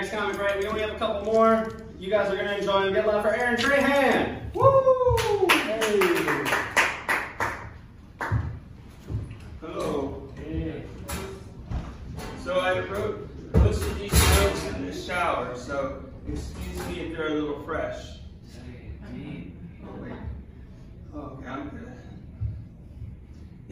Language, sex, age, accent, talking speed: English, male, 30-49, American, 115 wpm